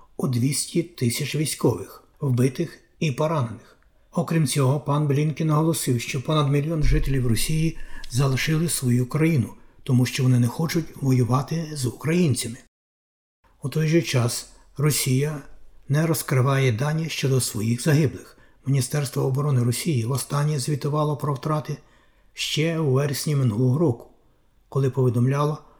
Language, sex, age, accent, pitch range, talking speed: Ukrainian, male, 60-79, native, 125-155 Hz, 125 wpm